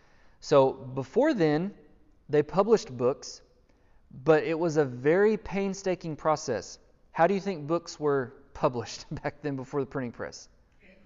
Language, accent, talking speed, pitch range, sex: English, American, 140 wpm, 130-160 Hz, male